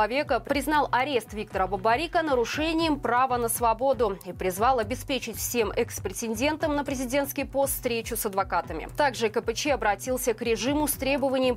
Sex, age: female, 20-39